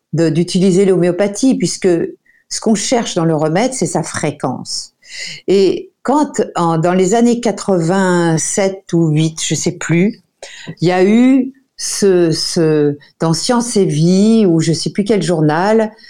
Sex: female